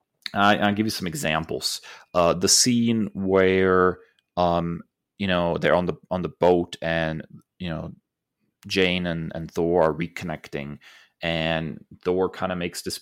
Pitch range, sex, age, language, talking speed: 85-100 Hz, male, 30-49, English, 150 wpm